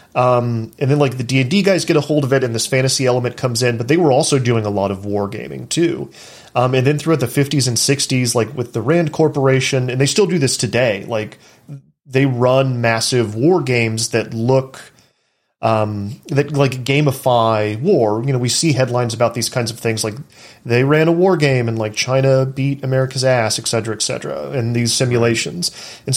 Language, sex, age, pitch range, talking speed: English, male, 30-49, 115-140 Hz, 215 wpm